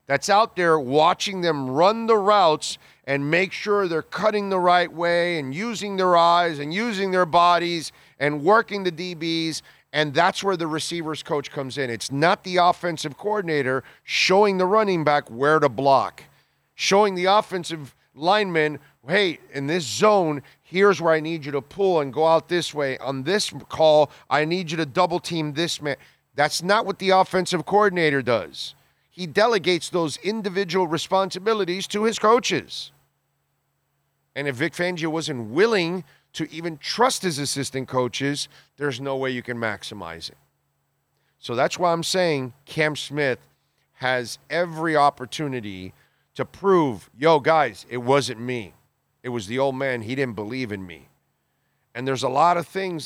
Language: English